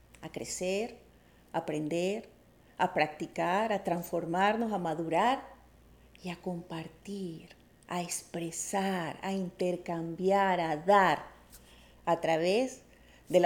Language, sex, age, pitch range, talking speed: English, female, 40-59, 165-230 Hz, 100 wpm